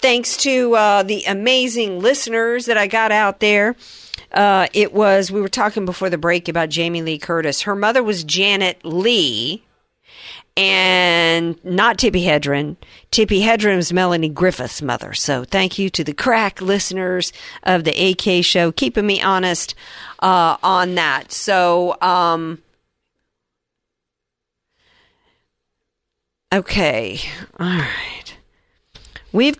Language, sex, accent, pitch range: English, female, American, 165-210 Hz